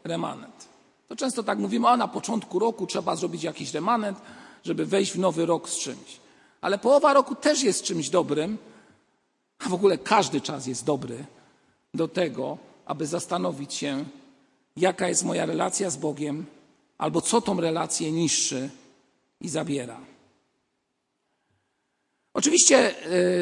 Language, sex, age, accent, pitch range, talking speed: Polish, male, 50-69, native, 165-230 Hz, 135 wpm